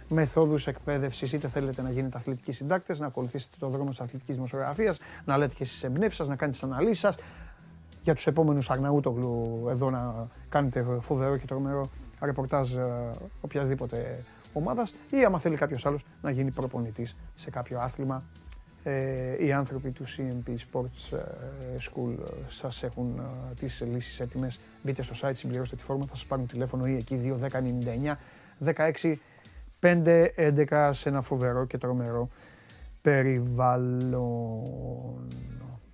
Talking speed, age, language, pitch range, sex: 135 wpm, 30-49, Greek, 125-160 Hz, male